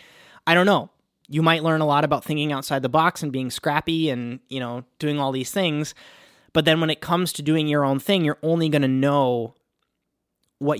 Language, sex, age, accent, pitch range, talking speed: English, male, 20-39, American, 125-155 Hz, 215 wpm